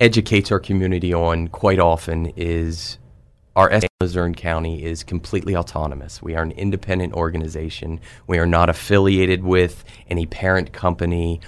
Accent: American